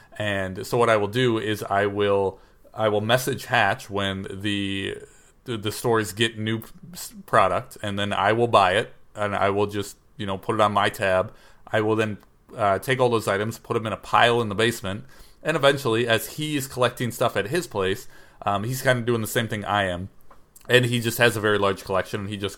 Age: 30-49